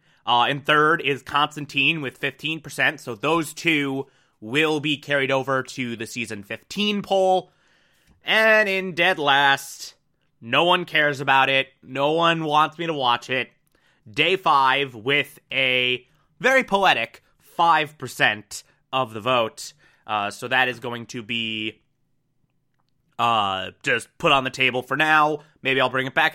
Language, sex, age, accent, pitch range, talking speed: English, male, 20-39, American, 135-190 Hz, 150 wpm